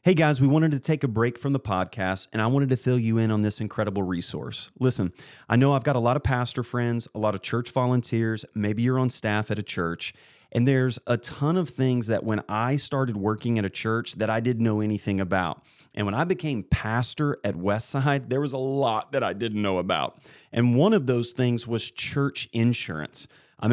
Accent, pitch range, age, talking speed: American, 105-135 Hz, 30-49, 225 wpm